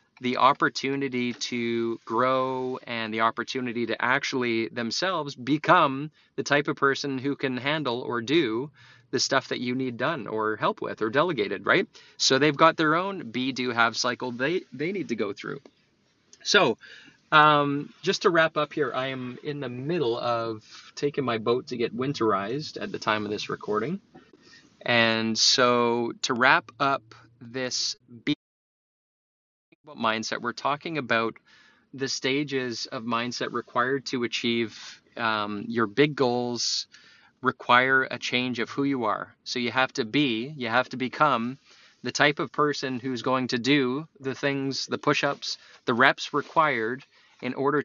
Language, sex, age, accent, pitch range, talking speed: English, male, 20-39, American, 120-145 Hz, 160 wpm